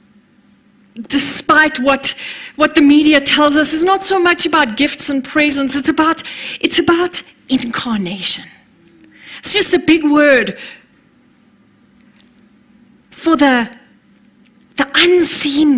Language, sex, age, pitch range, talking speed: English, female, 40-59, 215-290 Hz, 110 wpm